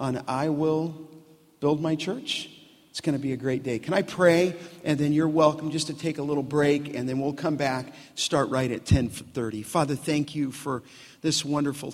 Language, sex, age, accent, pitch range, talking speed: English, male, 50-69, American, 130-145 Hz, 200 wpm